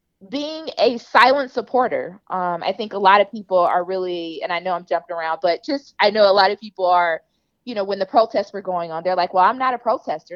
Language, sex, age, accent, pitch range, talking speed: English, female, 20-39, American, 180-235 Hz, 250 wpm